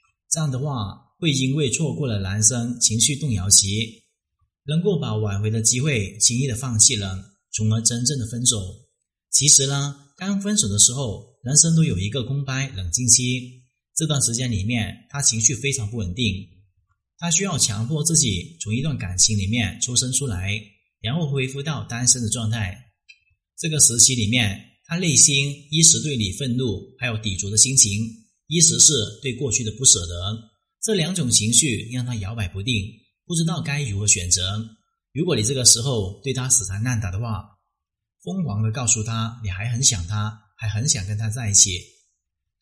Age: 30-49